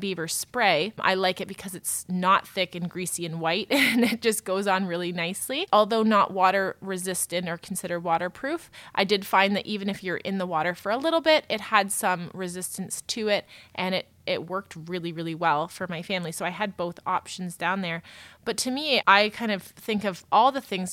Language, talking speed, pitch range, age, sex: English, 215 wpm, 180-210 Hz, 20-39, female